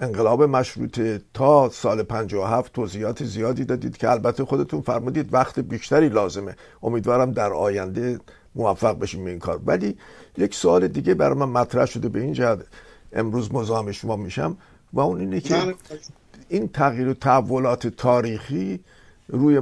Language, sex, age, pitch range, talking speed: Persian, male, 50-69, 110-135 Hz, 155 wpm